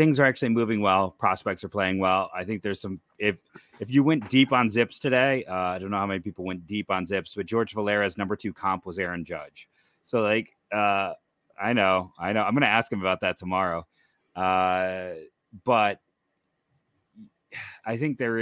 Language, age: English, 30-49